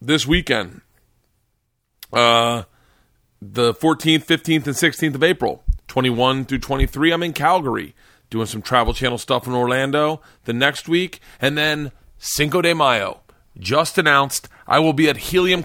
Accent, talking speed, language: American, 145 wpm, English